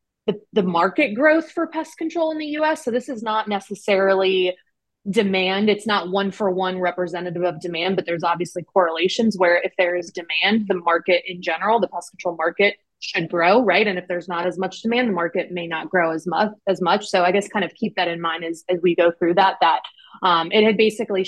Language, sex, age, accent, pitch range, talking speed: English, female, 20-39, American, 175-210 Hz, 225 wpm